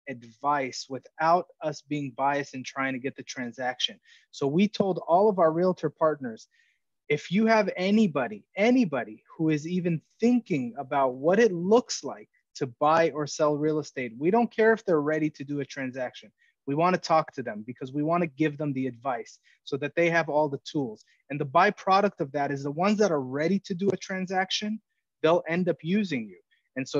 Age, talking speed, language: 30-49, 205 wpm, English